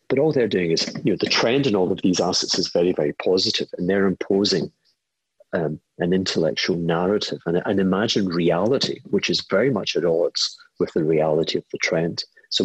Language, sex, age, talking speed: English, male, 50-69, 200 wpm